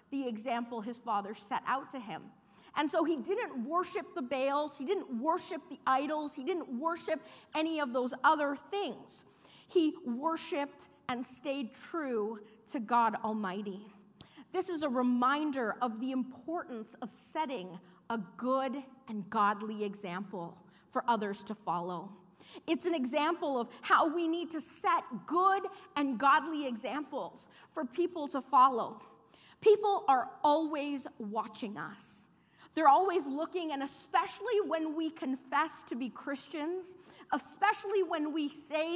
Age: 40-59